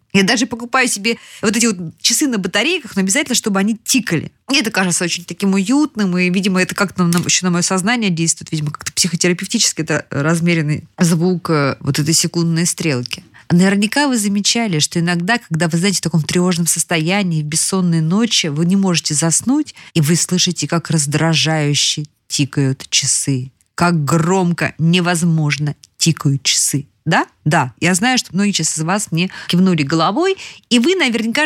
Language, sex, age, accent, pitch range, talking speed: Russian, female, 20-39, native, 160-225 Hz, 160 wpm